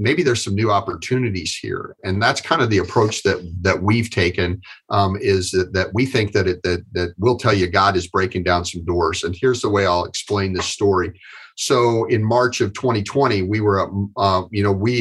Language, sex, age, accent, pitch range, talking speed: English, male, 40-59, American, 95-115 Hz, 215 wpm